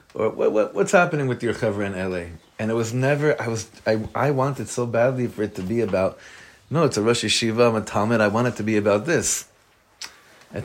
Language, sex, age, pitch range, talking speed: English, male, 30-49, 90-110 Hz, 240 wpm